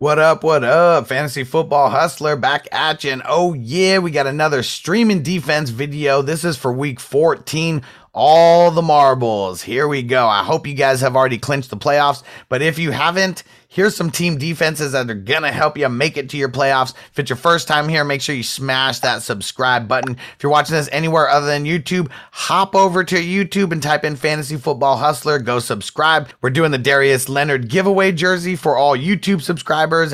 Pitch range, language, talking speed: 130-170 Hz, English, 205 wpm